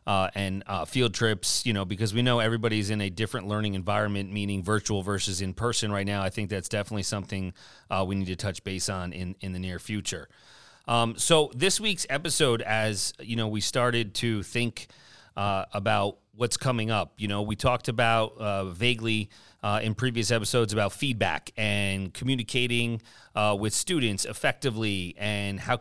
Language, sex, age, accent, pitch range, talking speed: English, male, 30-49, American, 105-130 Hz, 180 wpm